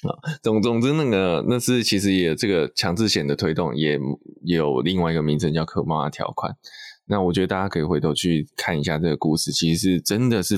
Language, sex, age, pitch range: Chinese, male, 20-39, 80-110 Hz